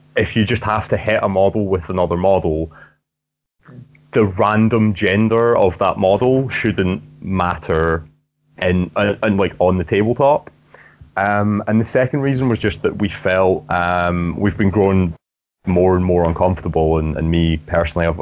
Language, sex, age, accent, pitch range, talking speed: English, male, 30-49, British, 85-105 Hz, 165 wpm